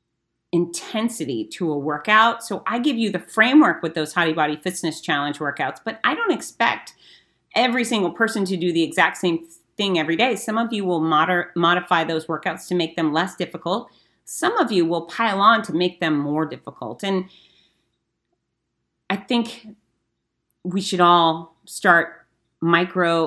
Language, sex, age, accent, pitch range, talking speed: English, female, 40-59, American, 165-220 Hz, 160 wpm